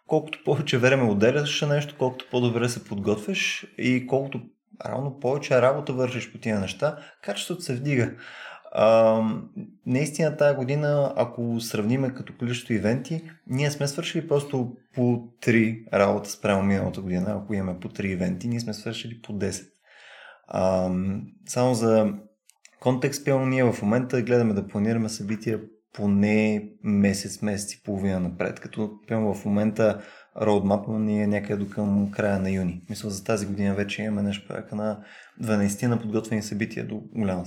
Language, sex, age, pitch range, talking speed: Bulgarian, male, 20-39, 105-130 Hz, 155 wpm